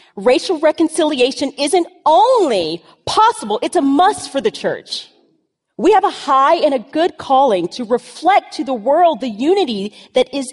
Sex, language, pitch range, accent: female, English, 225-315 Hz, American